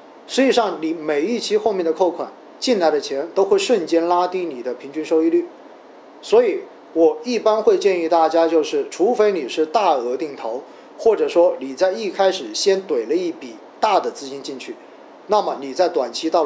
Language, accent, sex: Chinese, native, male